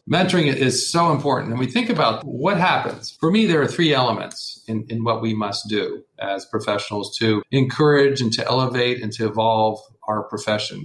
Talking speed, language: 190 wpm, English